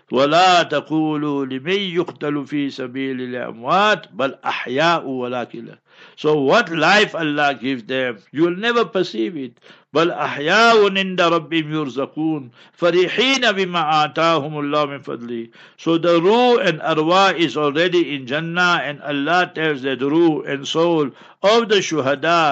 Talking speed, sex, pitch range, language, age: 110 wpm, male, 140-180 Hz, English, 60-79